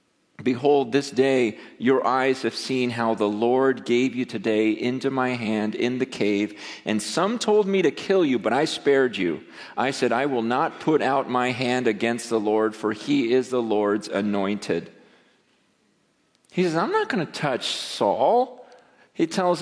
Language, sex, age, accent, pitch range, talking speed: English, male, 40-59, American, 125-195 Hz, 175 wpm